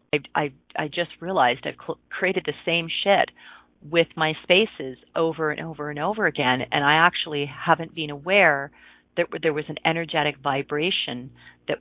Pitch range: 145-175 Hz